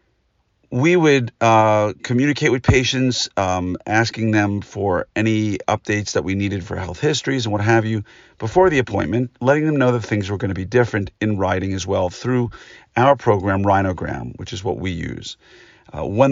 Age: 50-69